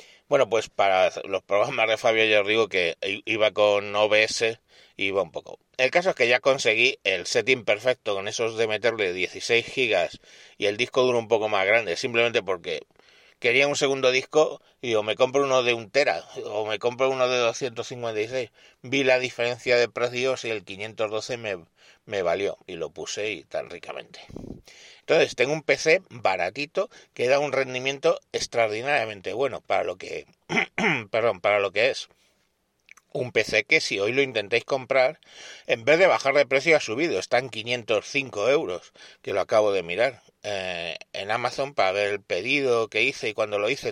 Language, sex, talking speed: Spanish, male, 185 wpm